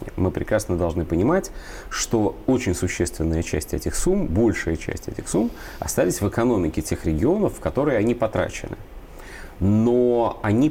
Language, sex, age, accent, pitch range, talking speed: Russian, male, 30-49, native, 85-115 Hz, 140 wpm